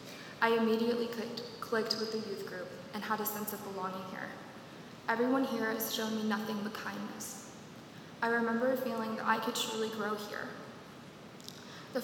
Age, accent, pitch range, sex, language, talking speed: 20-39, American, 210-230 Hz, female, English, 165 wpm